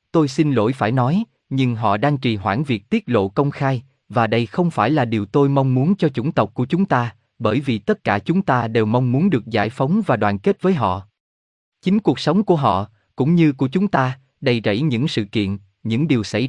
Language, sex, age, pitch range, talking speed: Vietnamese, male, 20-39, 115-160 Hz, 235 wpm